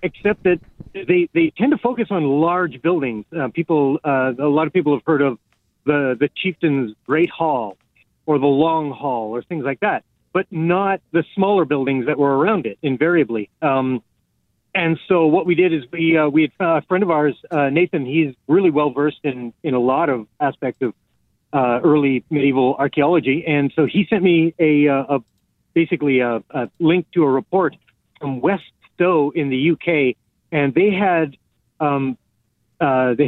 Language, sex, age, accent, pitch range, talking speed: English, male, 30-49, American, 135-170 Hz, 180 wpm